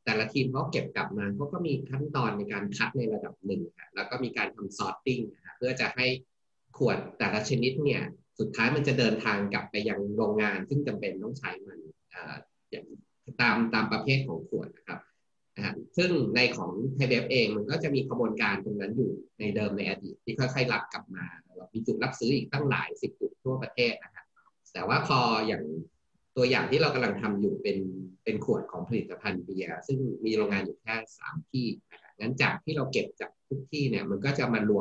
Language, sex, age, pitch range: Thai, male, 20-39, 105-135 Hz